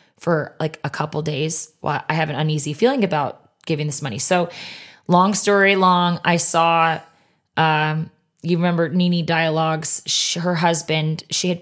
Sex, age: female, 20-39